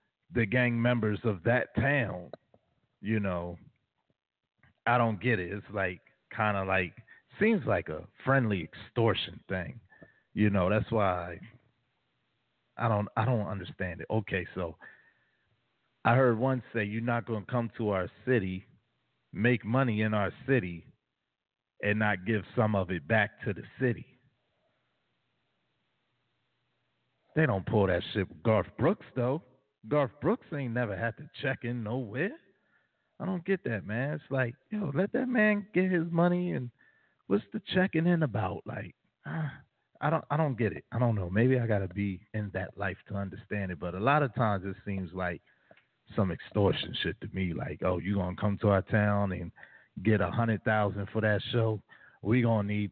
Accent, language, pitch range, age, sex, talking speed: American, English, 100-125 Hz, 40-59, male, 175 wpm